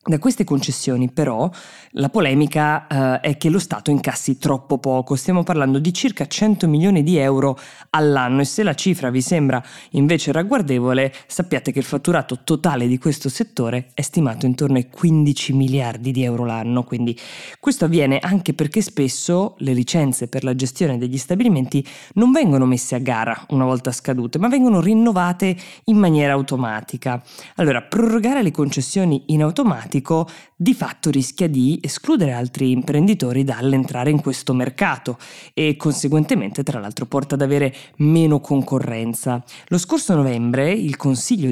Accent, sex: native, female